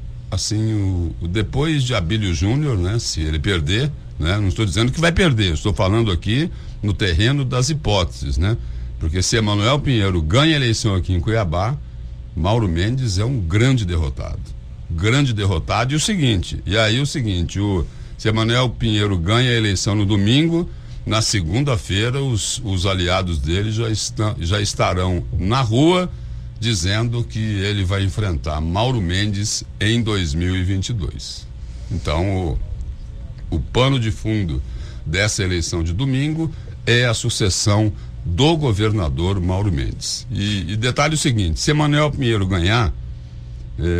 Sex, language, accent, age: male, Portuguese, Brazilian, 60-79